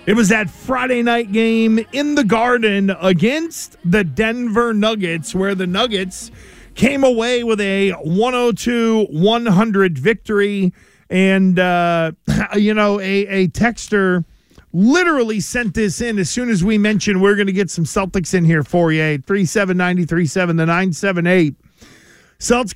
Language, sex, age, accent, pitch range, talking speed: English, male, 40-59, American, 185-235 Hz, 145 wpm